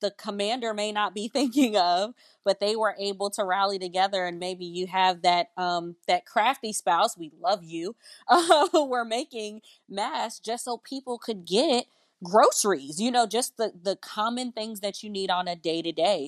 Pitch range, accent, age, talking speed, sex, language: 175-210 Hz, American, 20-39, 190 wpm, female, English